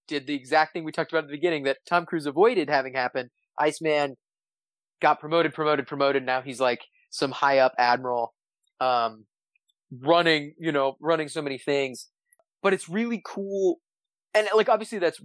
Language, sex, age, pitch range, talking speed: English, male, 20-39, 130-170 Hz, 175 wpm